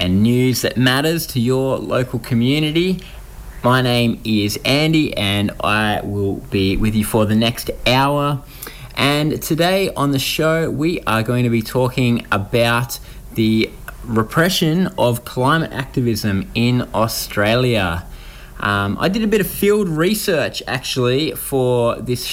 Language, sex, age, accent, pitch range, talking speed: English, male, 20-39, Australian, 115-140 Hz, 140 wpm